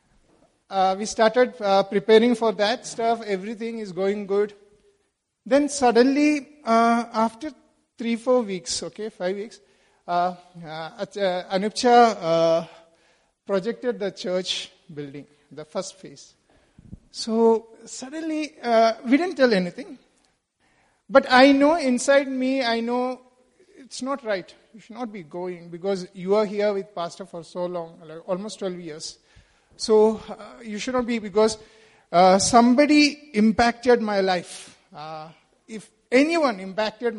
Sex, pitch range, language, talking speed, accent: male, 185-235 Hz, English, 130 wpm, Indian